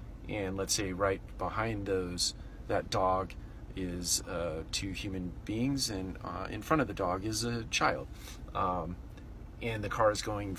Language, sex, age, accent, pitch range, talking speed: English, male, 30-49, American, 90-110 Hz, 165 wpm